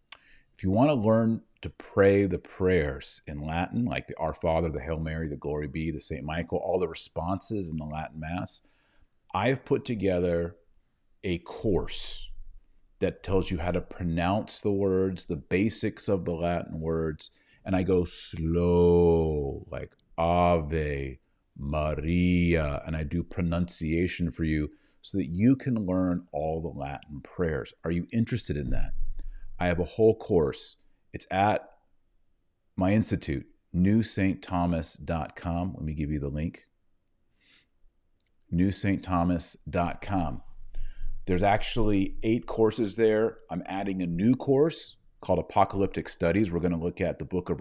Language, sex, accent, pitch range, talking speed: English, male, American, 80-100 Hz, 145 wpm